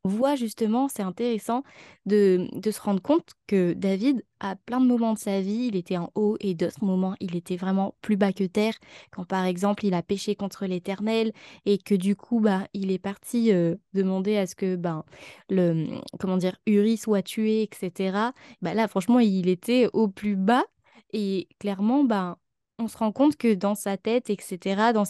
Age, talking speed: 20-39, 200 wpm